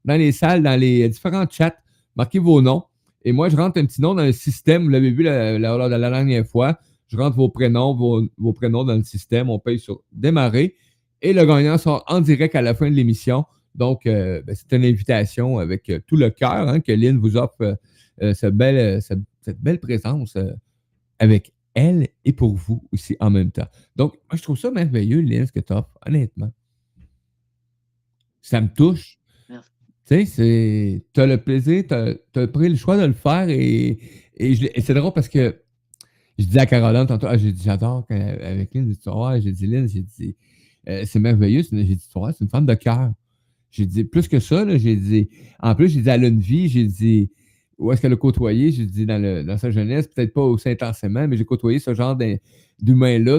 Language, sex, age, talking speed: French, male, 50-69, 220 wpm